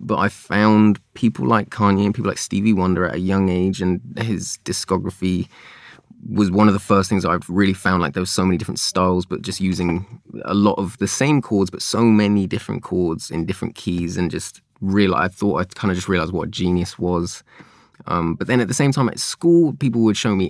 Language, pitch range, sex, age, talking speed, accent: English, 90-115 Hz, male, 20-39, 230 wpm, British